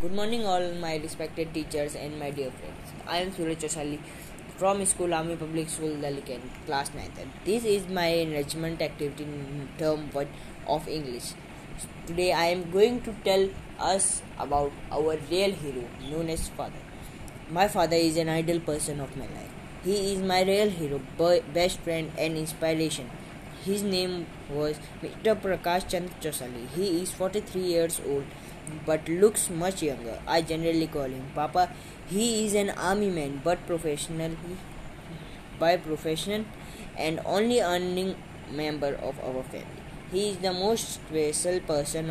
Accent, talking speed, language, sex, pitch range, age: native, 160 wpm, Hindi, female, 150-185 Hz, 20-39